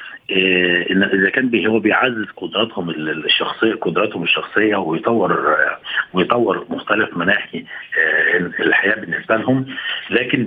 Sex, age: male, 50-69